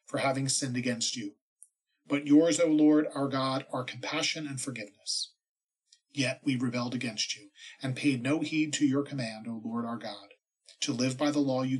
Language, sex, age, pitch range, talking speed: English, male, 40-59, 130-155 Hz, 190 wpm